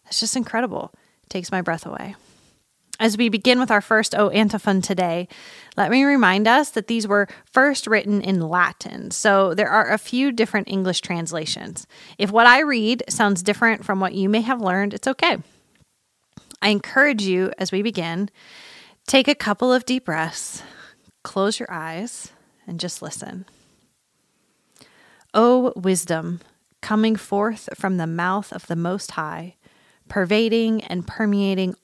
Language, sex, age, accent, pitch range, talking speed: English, female, 30-49, American, 180-220 Hz, 155 wpm